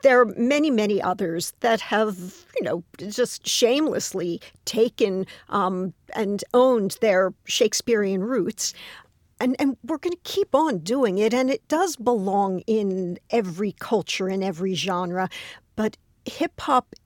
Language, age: English, 50-69